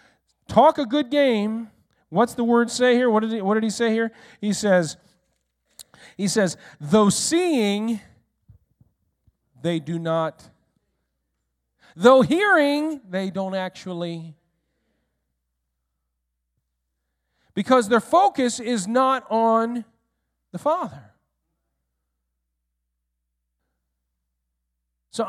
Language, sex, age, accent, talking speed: English, male, 40-59, American, 90 wpm